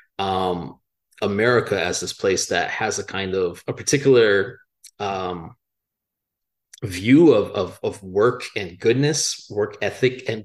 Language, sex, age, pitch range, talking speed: English, male, 30-49, 95-140 Hz, 130 wpm